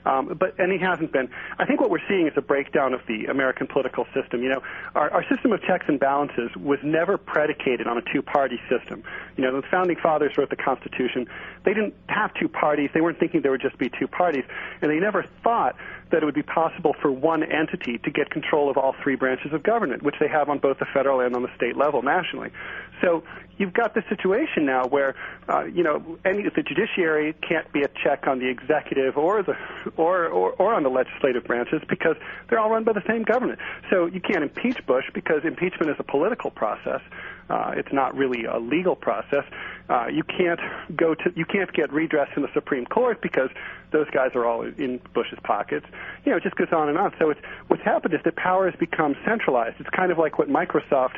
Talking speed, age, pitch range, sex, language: 225 wpm, 40-59, 135-180 Hz, male, English